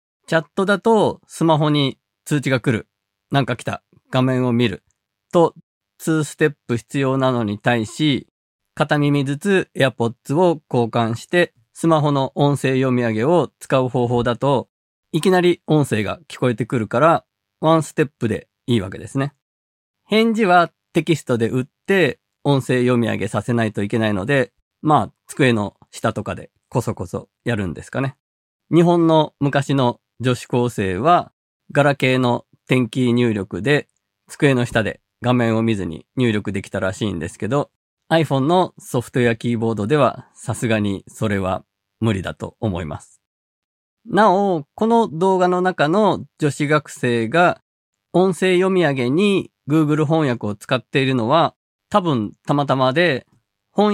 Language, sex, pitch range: Japanese, male, 115-160 Hz